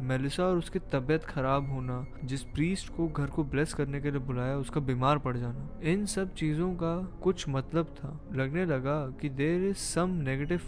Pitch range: 135-175 Hz